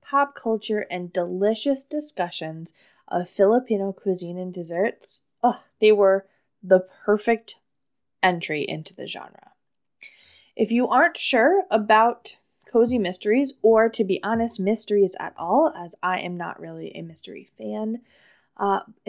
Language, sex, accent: English, female, American